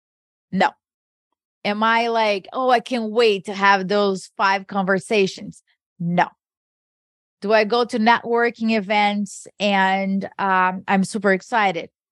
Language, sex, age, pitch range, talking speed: English, female, 30-49, 195-245 Hz, 125 wpm